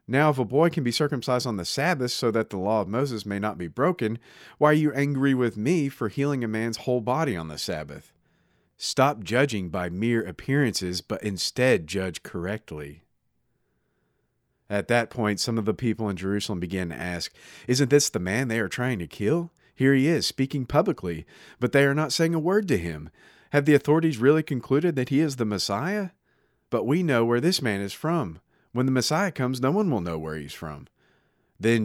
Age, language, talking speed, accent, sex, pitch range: 40-59, English, 205 wpm, American, male, 95-135 Hz